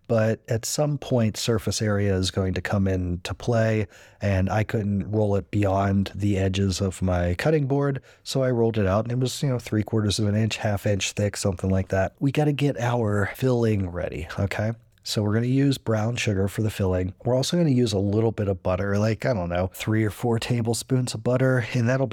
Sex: male